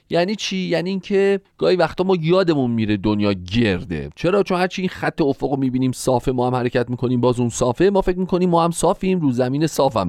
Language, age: Persian, 40-59